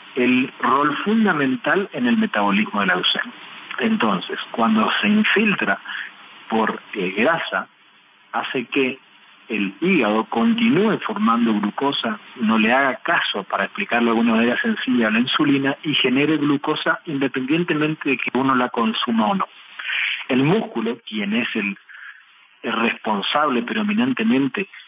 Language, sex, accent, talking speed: Spanish, male, Argentinian, 135 wpm